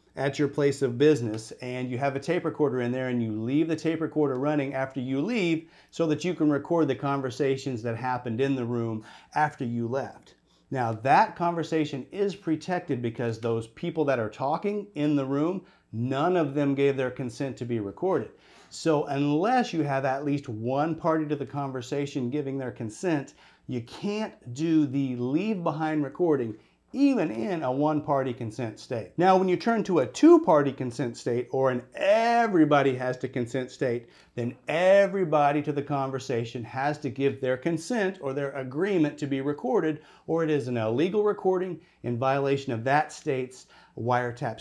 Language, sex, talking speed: English, male, 175 wpm